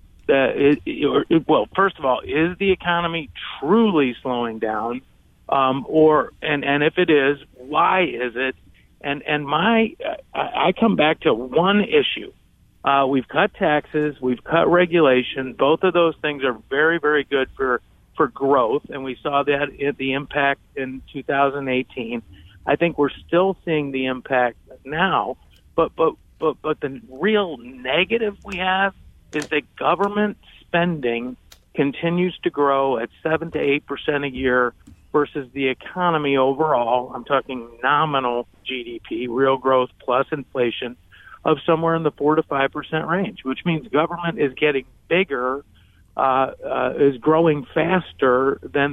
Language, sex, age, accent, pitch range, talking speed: English, male, 50-69, American, 130-165 Hz, 145 wpm